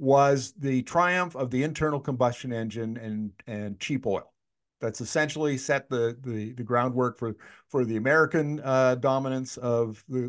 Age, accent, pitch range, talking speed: 50-69, American, 115-150 Hz, 155 wpm